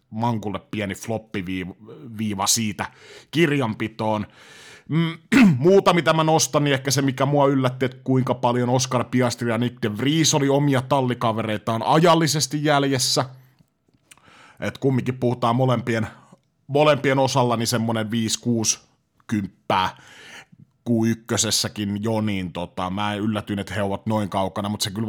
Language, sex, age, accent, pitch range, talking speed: Finnish, male, 30-49, native, 105-140 Hz, 120 wpm